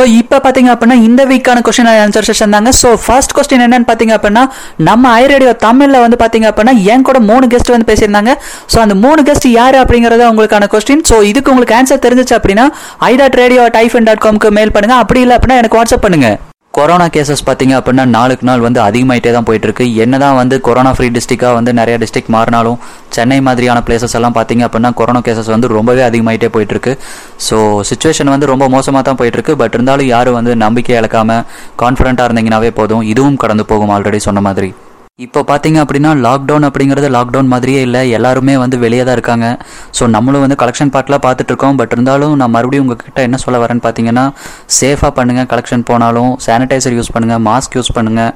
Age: 20-39